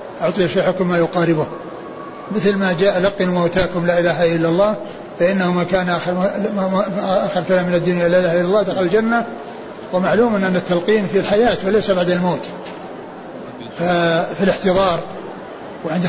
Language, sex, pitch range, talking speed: Arabic, male, 175-205 Hz, 150 wpm